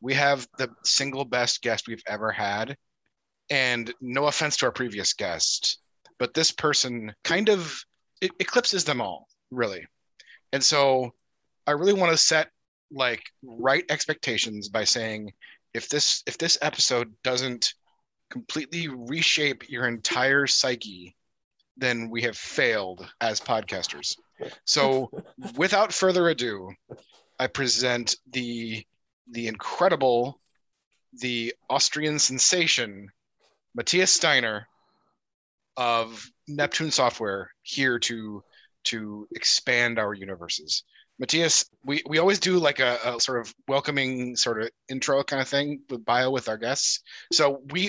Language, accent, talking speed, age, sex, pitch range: English, American, 130 wpm, 30-49, male, 120-155 Hz